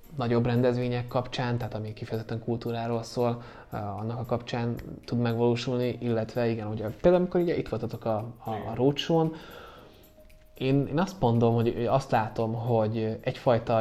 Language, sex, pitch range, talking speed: Hungarian, male, 110-125 Hz, 145 wpm